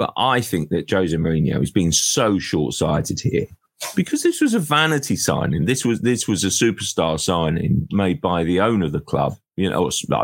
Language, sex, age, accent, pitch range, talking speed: English, male, 40-59, British, 90-135 Hz, 200 wpm